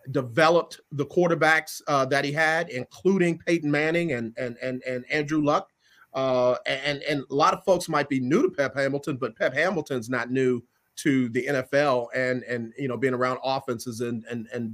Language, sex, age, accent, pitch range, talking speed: English, male, 40-59, American, 130-170 Hz, 190 wpm